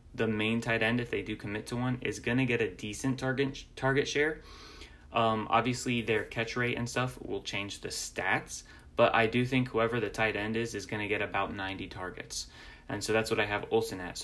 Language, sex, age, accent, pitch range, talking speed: English, male, 10-29, American, 100-120 Hz, 230 wpm